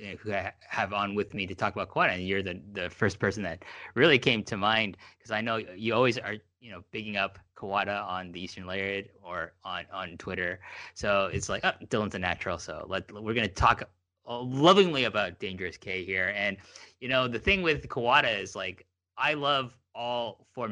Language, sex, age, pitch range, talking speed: English, male, 30-49, 90-115 Hz, 205 wpm